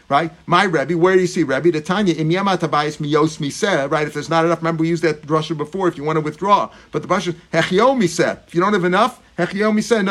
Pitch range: 165-210 Hz